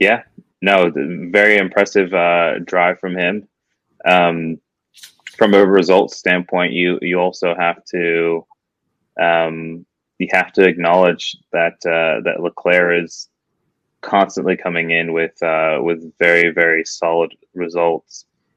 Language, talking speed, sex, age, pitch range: English, 125 wpm, male, 20-39, 80-90 Hz